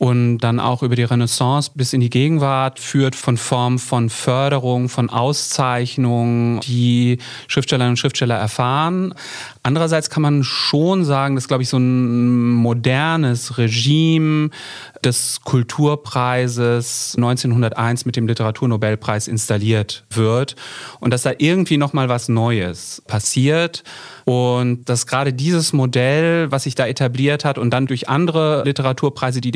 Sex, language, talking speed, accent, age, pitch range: male, German, 135 wpm, German, 30-49, 120-140 Hz